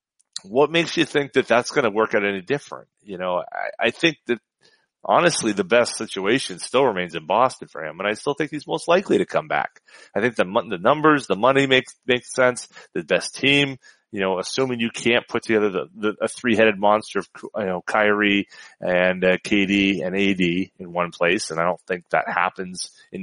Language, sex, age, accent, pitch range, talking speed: English, male, 30-49, American, 100-130 Hz, 210 wpm